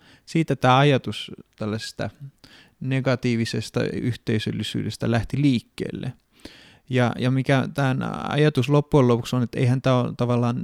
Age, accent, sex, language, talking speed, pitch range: 30-49, native, male, Finnish, 120 wpm, 115-140 Hz